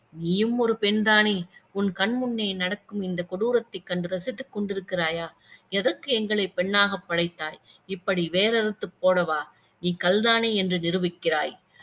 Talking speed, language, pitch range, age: 110 wpm, Tamil, 170-200 Hz, 20-39